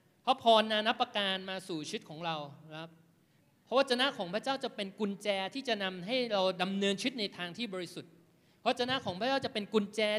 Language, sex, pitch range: Thai, male, 165-215 Hz